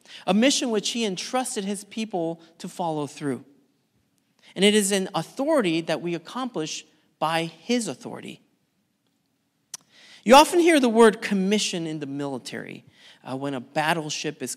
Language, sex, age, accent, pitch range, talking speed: English, male, 40-59, American, 160-225 Hz, 145 wpm